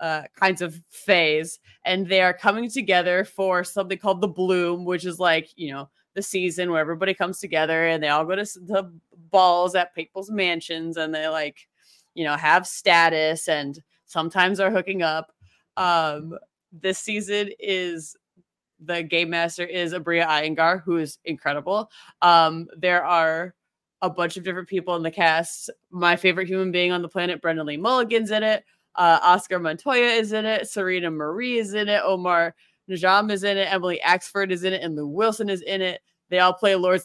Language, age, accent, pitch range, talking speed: English, 20-39, American, 170-200 Hz, 185 wpm